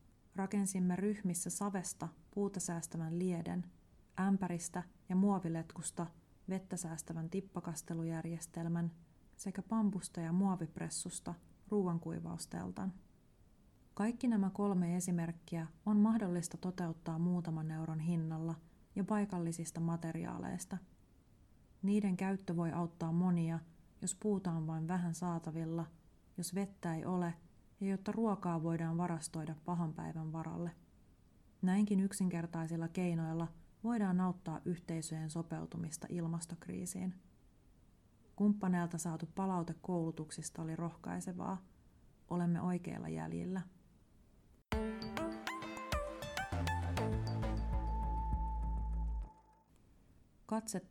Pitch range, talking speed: 160-185 Hz, 85 wpm